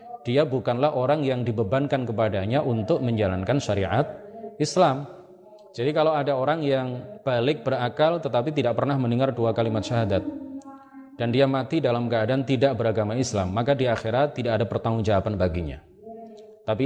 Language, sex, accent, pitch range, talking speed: Indonesian, male, native, 110-170 Hz, 140 wpm